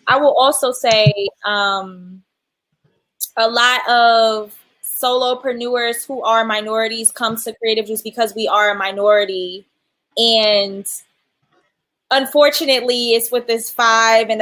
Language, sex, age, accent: English, female, 20-39, American